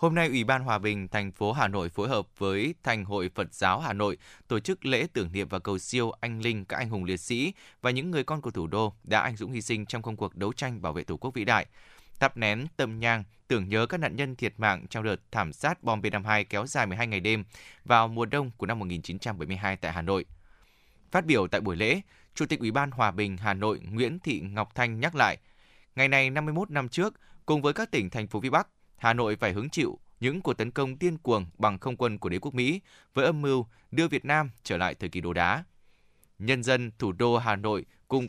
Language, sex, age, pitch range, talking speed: Vietnamese, male, 20-39, 100-135 Hz, 245 wpm